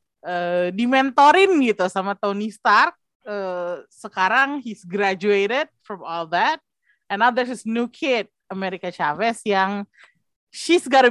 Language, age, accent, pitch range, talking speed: Indonesian, 30-49, native, 195-270 Hz, 140 wpm